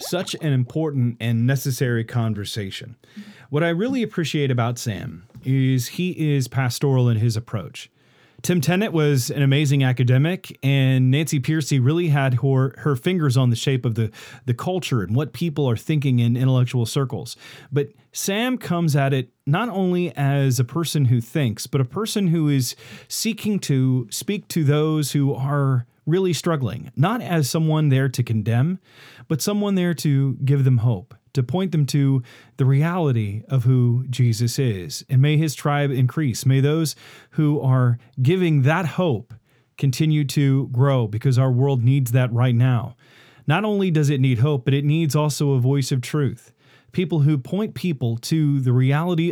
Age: 40-59